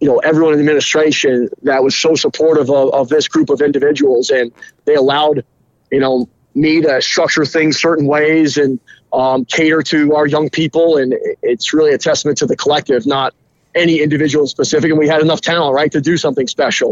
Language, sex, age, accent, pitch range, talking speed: English, male, 30-49, American, 135-160 Hz, 200 wpm